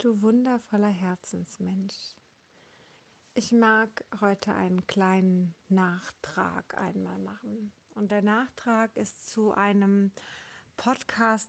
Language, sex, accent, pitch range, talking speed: German, female, German, 185-210 Hz, 95 wpm